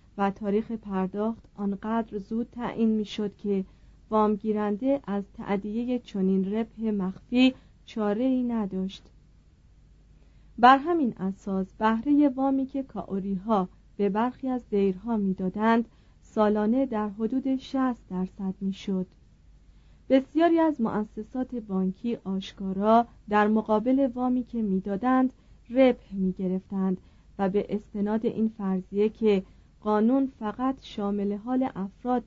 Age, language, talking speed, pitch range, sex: 40-59, Persian, 110 wpm, 195-250 Hz, female